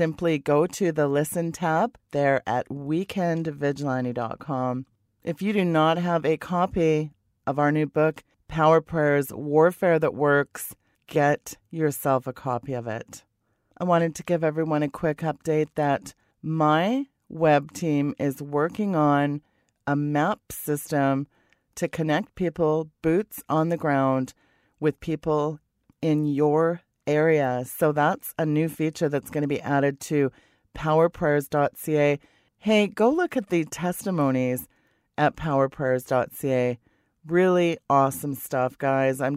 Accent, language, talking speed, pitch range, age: American, English, 130 wpm, 135-160 Hz, 40-59